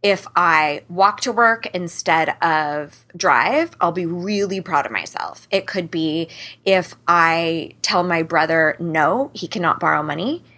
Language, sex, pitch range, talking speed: English, female, 165-205 Hz, 155 wpm